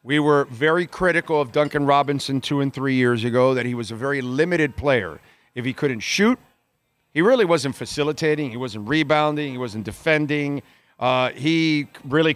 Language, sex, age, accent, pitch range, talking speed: English, male, 50-69, American, 130-155 Hz, 175 wpm